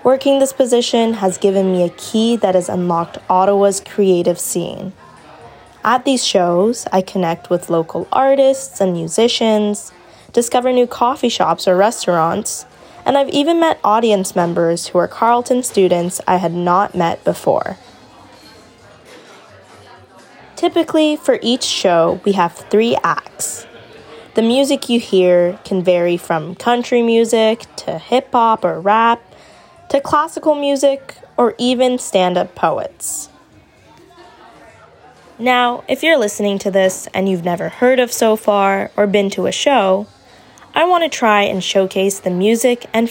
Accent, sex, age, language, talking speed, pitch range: American, female, 10-29, English, 140 wpm, 185-250 Hz